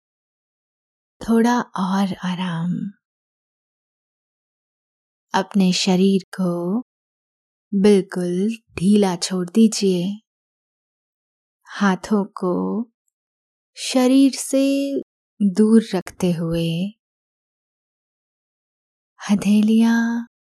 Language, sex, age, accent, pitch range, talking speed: Hindi, female, 20-39, native, 180-210 Hz, 55 wpm